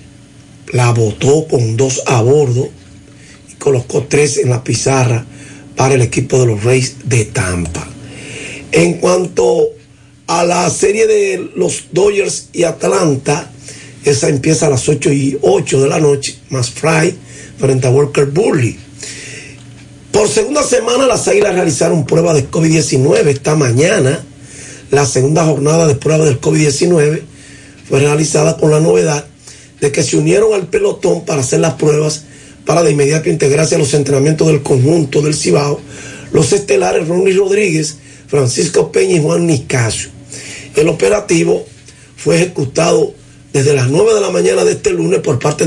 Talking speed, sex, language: 150 wpm, male, Spanish